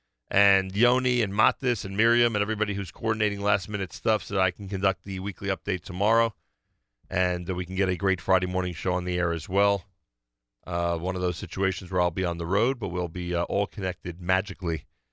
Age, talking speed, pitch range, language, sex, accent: 40-59, 210 wpm, 90-115 Hz, English, male, American